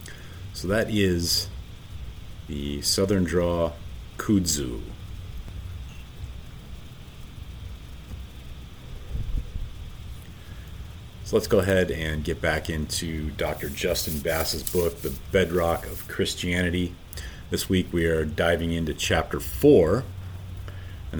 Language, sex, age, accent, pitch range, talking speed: English, male, 40-59, American, 80-95 Hz, 90 wpm